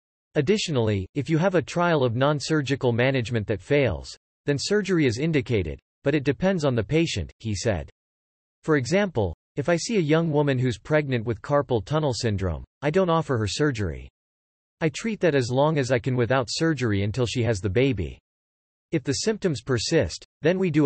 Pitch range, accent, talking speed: 110-155 Hz, American, 185 wpm